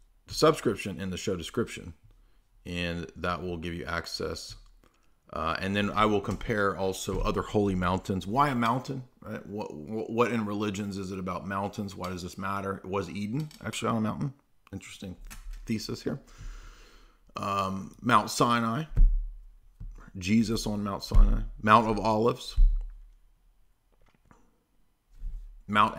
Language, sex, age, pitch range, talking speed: English, male, 40-59, 95-115 Hz, 135 wpm